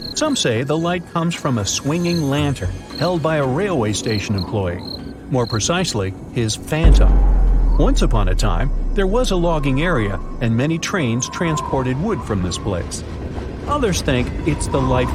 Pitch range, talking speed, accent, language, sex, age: 100-165 Hz, 160 wpm, American, English, male, 50-69